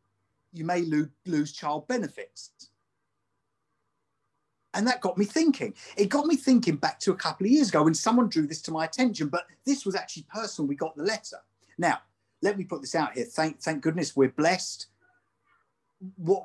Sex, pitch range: male, 155-220 Hz